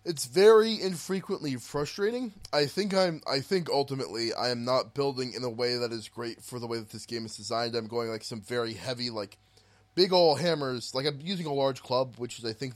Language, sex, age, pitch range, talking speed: English, male, 20-39, 105-150 Hz, 225 wpm